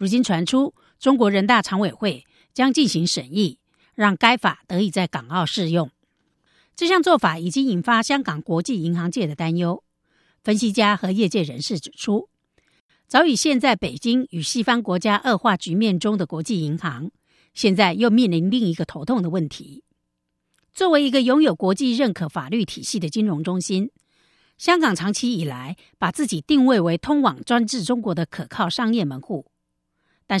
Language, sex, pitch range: Chinese, female, 175-250 Hz